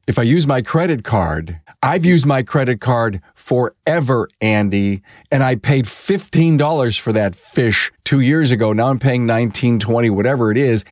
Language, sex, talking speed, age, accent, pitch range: English, male, 165 wpm, 50-69, American, 105-135 Hz